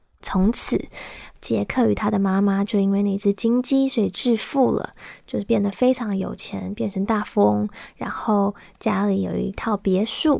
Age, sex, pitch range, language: 20-39, female, 200-250 Hz, Chinese